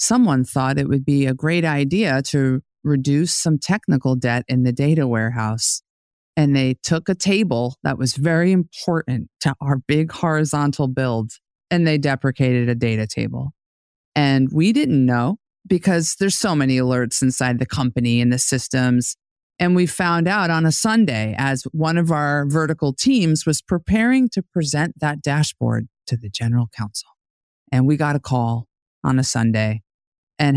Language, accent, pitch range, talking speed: English, American, 125-155 Hz, 165 wpm